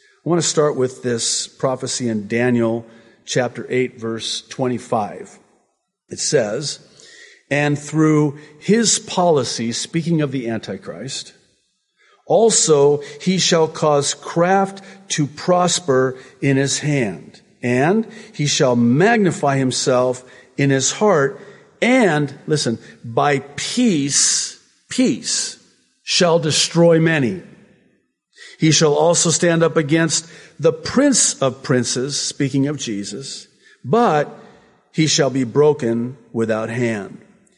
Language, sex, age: English, male, 50-69